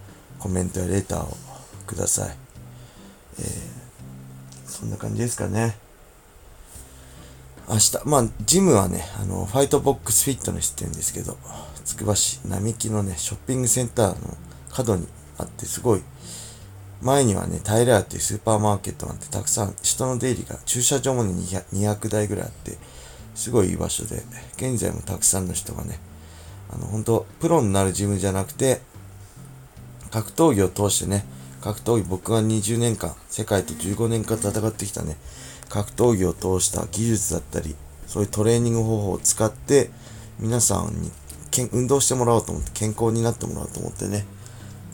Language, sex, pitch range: Japanese, male, 95-115 Hz